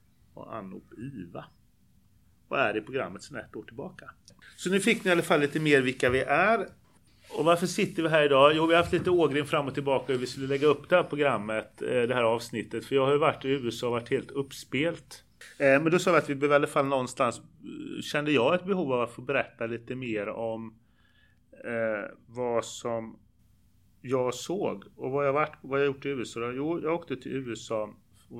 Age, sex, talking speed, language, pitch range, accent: 30-49, male, 205 wpm, Swedish, 110-145 Hz, native